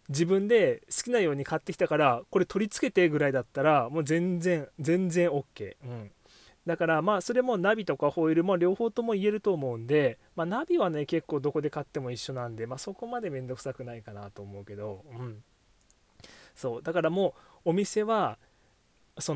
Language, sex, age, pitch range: Japanese, male, 20-39, 130-195 Hz